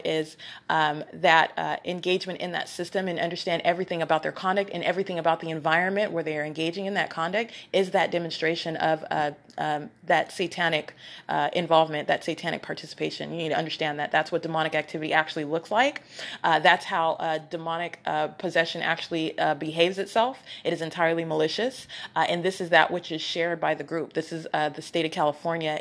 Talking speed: 195 wpm